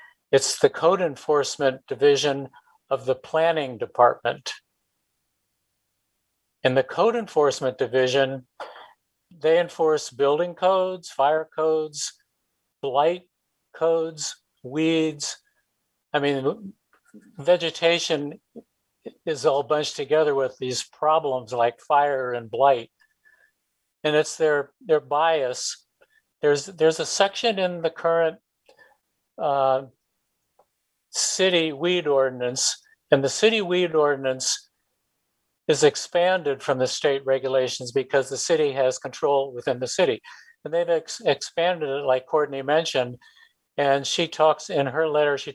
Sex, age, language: male, 50-69, English